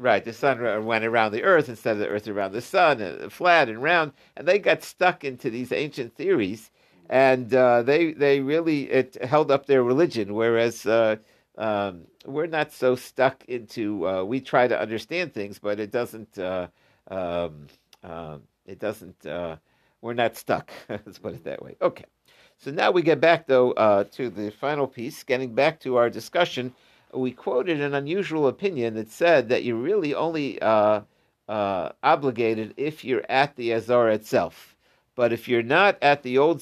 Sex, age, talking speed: male, 60-79, 180 wpm